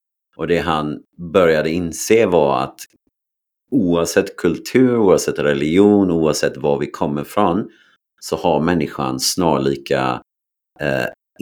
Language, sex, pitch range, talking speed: Swedish, male, 70-80 Hz, 110 wpm